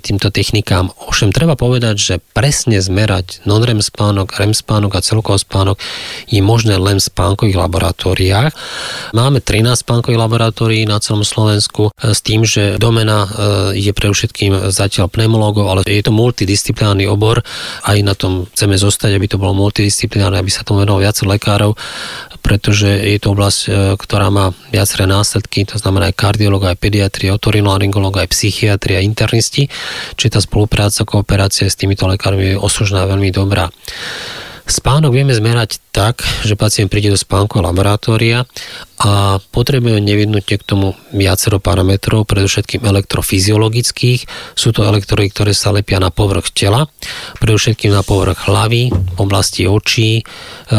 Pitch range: 100-110 Hz